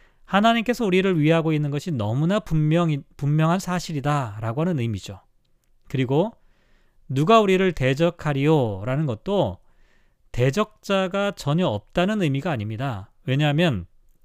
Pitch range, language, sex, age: 135-185 Hz, Korean, male, 40-59